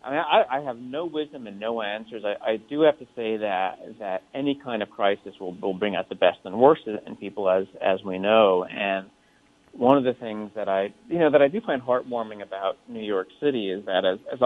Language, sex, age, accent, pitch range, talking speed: English, male, 40-59, American, 105-135 Hz, 240 wpm